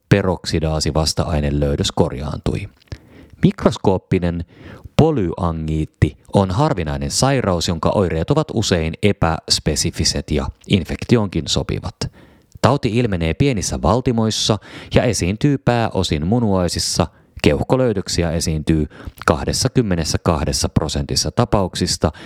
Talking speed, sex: 80 wpm, male